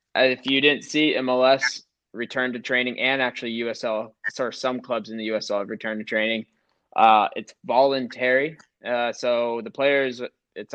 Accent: American